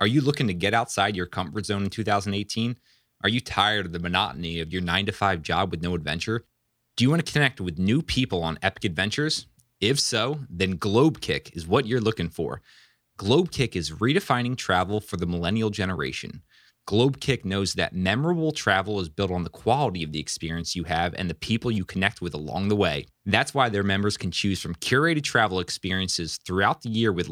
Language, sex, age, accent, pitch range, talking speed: English, male, 20-39, American, 90-120 Hz, 200 wpm